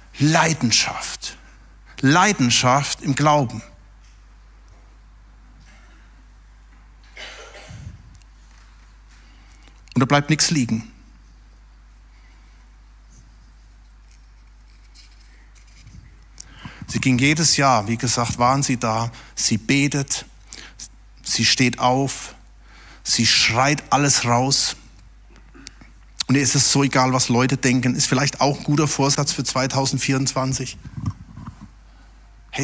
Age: 60-79